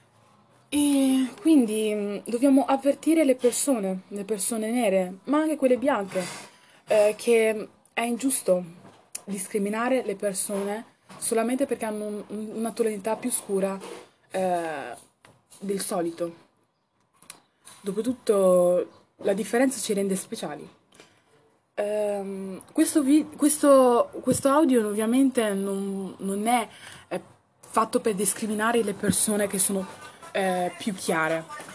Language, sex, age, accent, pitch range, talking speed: Italian, female, 20-39, native, 195-260 Hz, 110 wpm